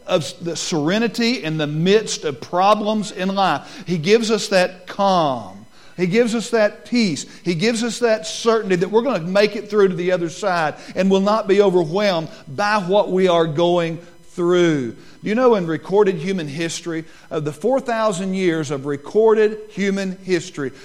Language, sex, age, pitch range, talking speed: English, male, 50-69, 170-220 Hz, 175 wpm